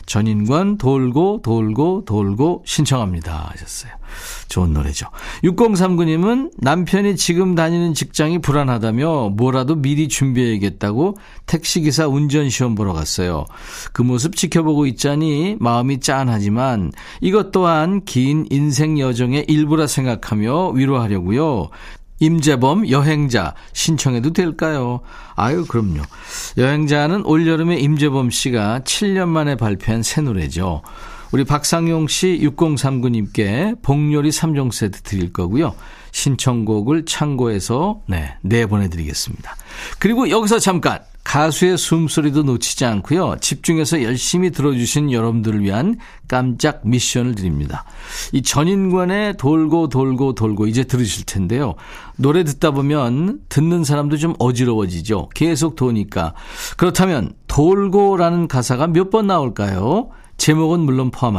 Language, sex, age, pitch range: Korean, male, 40-59, 115-165 Hz